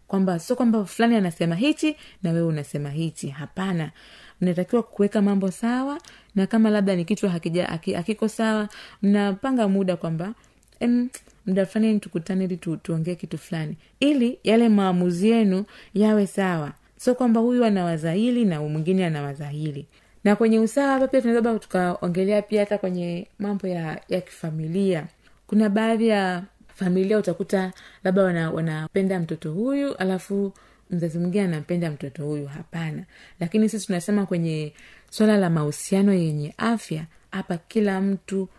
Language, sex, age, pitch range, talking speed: Swahili, female, 30-49, 170-210 Hz, 140 wpm